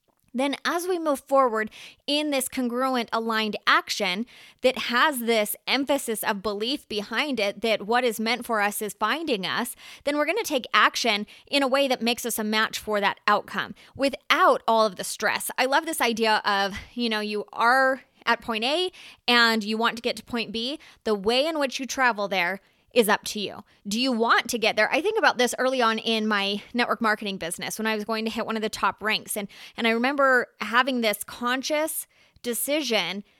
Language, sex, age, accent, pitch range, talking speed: English, female, 20-39, American, 215-255 Hz, 210 wpm